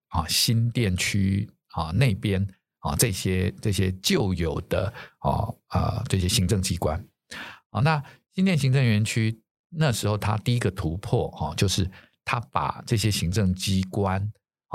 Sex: male